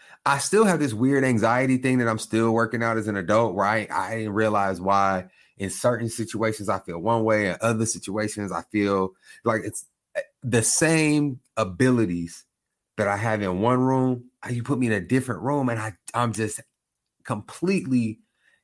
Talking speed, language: 185 wpm, English